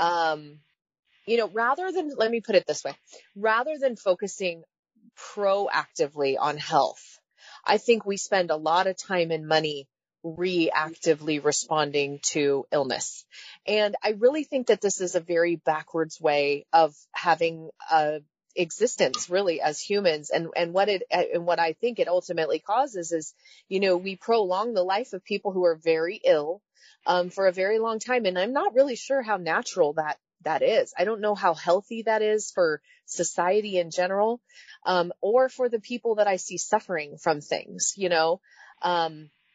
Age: 30-49